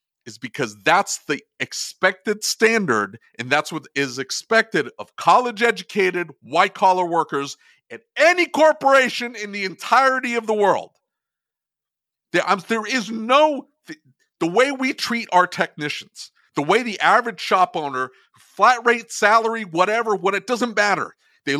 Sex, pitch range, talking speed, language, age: male, 135-220 Hz, 140 wpm, English, 50-69